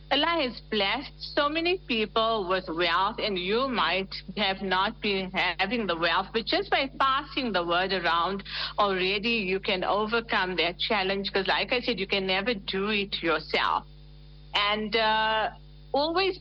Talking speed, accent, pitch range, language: 155 wpm, Indian, 180-230 Hz, English